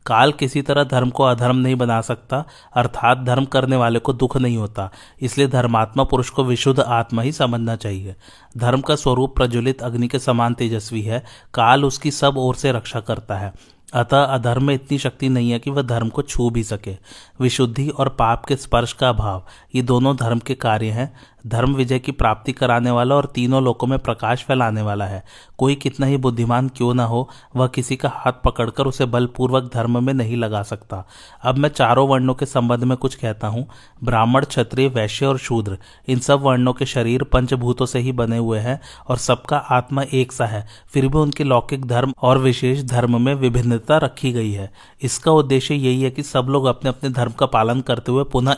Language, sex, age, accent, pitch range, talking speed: Hindi, male, 30-49, native, 120-135 Hz, 200 wpm